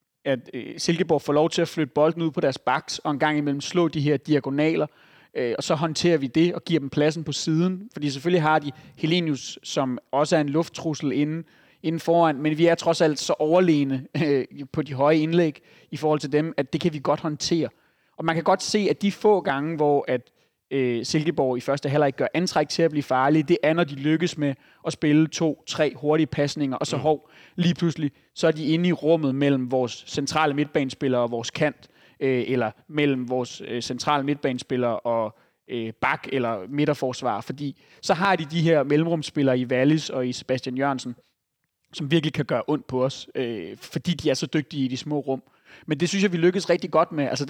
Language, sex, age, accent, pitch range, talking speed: Danish, male, 30-49, native, 135-165 Hz, 205 wpm